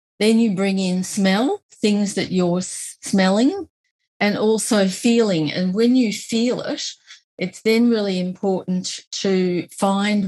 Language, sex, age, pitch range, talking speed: English, female, 40-59, 170-210 Hz, 135 wpm